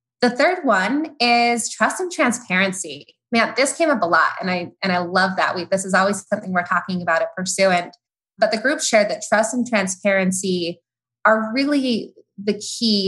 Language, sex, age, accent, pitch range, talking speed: English, female, 20-39, American, 180-220 Hz, 190 wpm